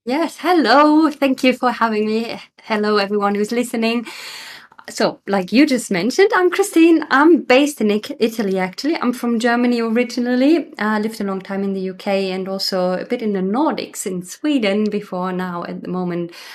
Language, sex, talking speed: English, female, 180 wpm